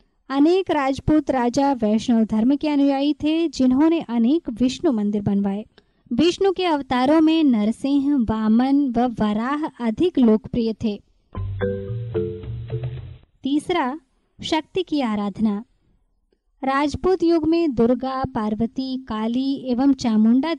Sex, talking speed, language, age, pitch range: male, 105 wpm, Hindi, 20-39, 220-310 Hz